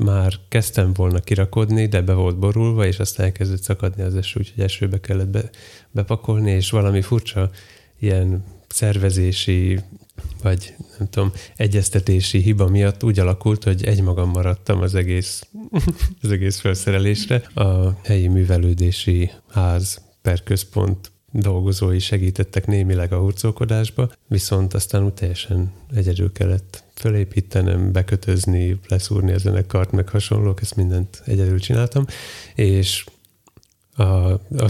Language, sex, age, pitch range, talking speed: Hungarian, male, 30-49, 95-105 Hz, 120 wpm